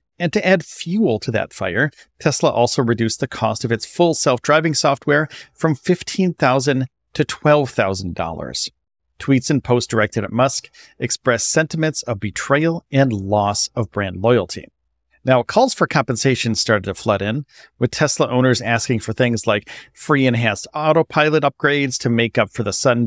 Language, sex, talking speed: English, male, 160 wpm